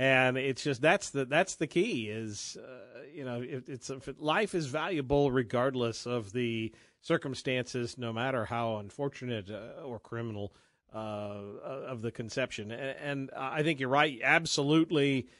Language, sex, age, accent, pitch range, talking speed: English, male, 50-69, American, 115-135 Hz, 150 wpm